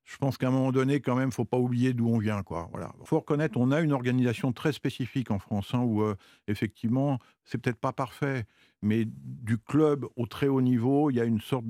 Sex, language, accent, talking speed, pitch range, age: male, French, French, 250 wpm, 110-130 Hz, 50-69